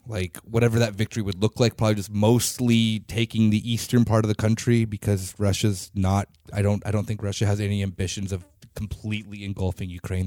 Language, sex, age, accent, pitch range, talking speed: English, male, 30-49, American, 100-125 Hz, 195 wpm